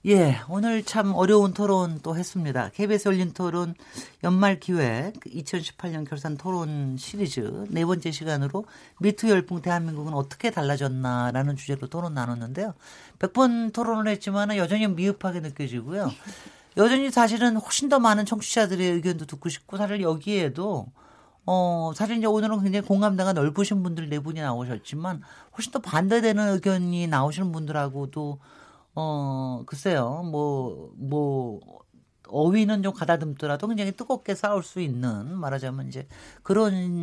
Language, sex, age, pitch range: Korean, male, 40-59, 150-200 Hz